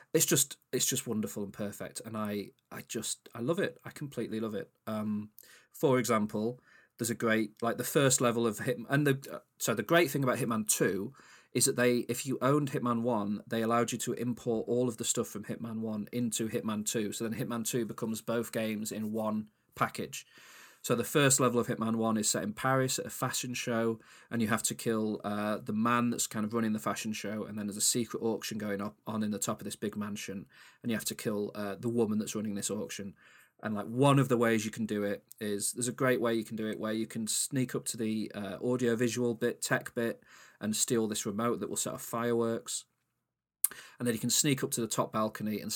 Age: 30-49